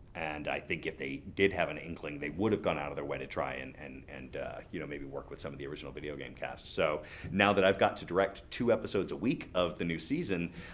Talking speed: 280 wpm